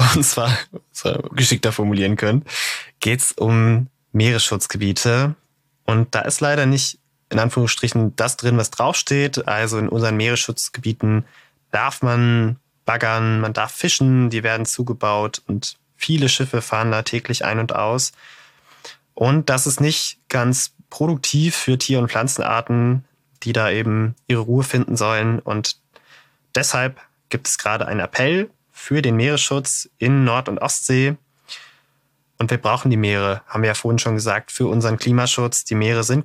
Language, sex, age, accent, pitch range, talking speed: German, male, 20-39, German, 110-135 Hz, 150 wpm